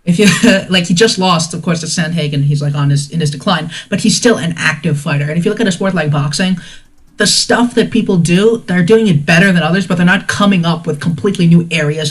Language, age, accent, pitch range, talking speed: English, 20-39, American, 155-195 Hz, 260 wpm